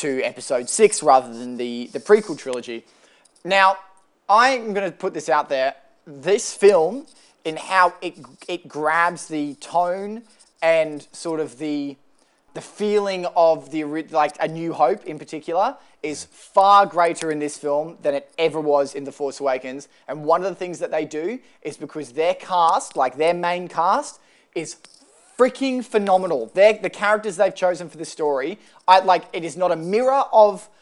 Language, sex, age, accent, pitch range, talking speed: English, male, 20-39, Australian, 160-210 Hz, 170 wpm